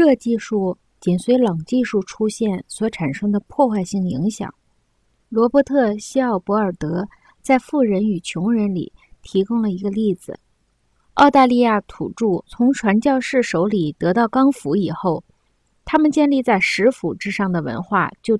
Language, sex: Chinese, female